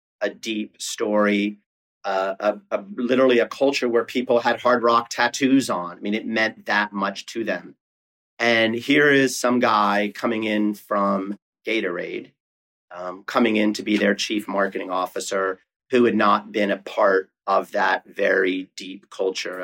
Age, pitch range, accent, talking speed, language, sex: 40-59, 100-120 Hz, American, 155 wpm, English, male